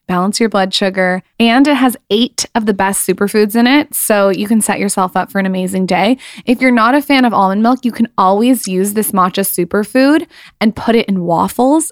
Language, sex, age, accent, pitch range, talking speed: English, female, 20-39, American, 185-230 Hz, 220 wpm